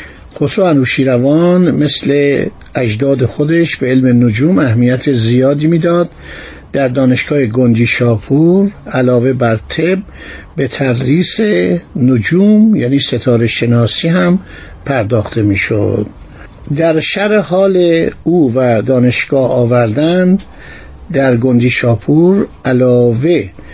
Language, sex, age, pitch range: Persian, male, 50-69, 120-160 Hz